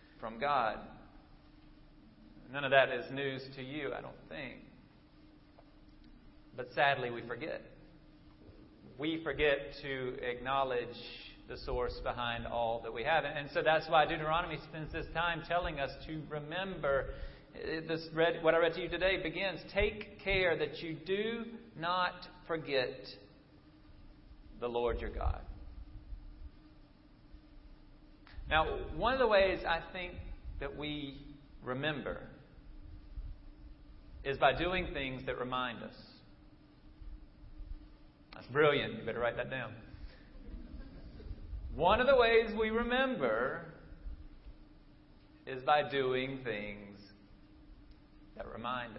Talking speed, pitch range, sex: 115 wpm, 120-165 Hz, male